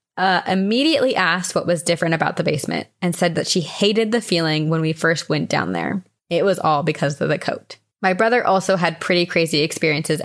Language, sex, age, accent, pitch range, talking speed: English, female, 20-39, American, 165-195 Hz, 210 wpm